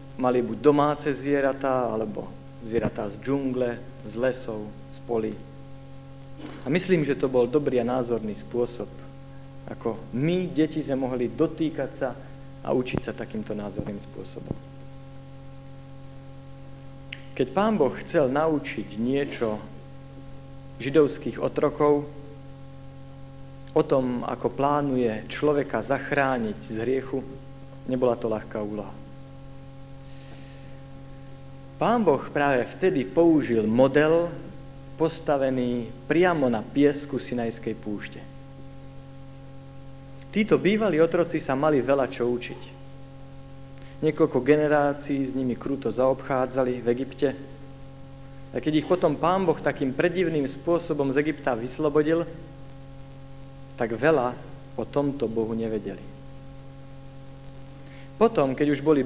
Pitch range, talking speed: 130-145 Hz, 105 wpm